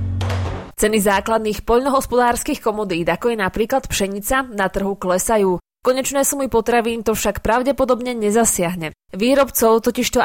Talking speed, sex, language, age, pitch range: 130 wpm, female, Slovak, 20-39, 195-245 Hz